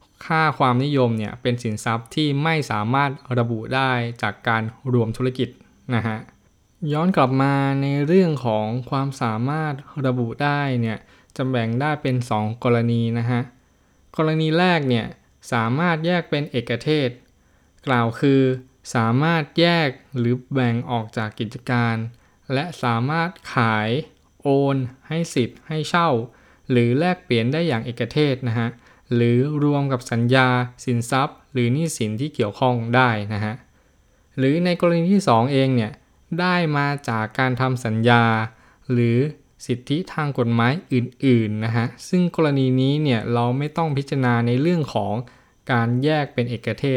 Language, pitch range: Thai, 115-145 Hz